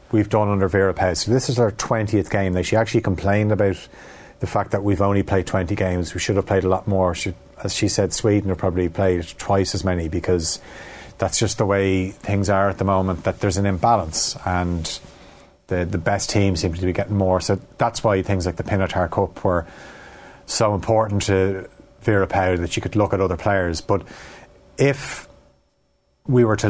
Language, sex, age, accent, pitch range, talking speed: English, male, 30-49, Irish, 95-110 Hz, 200 wpm